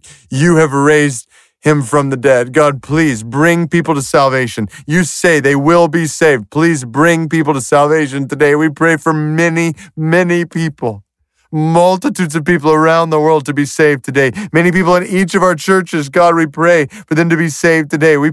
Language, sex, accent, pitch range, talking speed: English, male, American, 115-170 Hz, 190 wpm